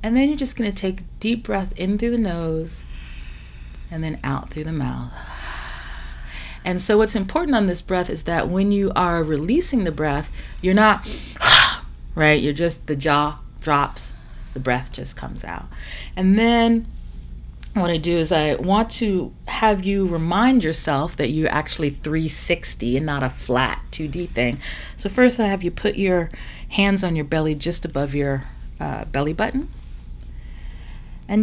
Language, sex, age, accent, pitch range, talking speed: English, female, 40-59, American, 120-190 Hz, 170 wpm